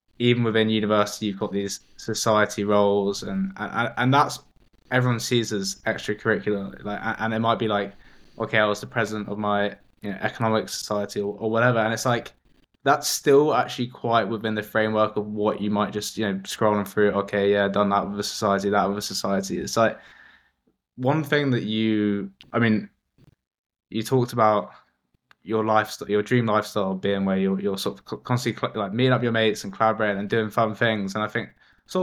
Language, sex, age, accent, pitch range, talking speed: English, male, 10-29, British, 100-115 Hz, 200 wpm